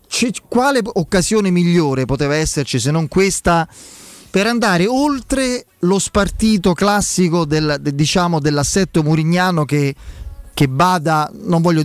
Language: Italian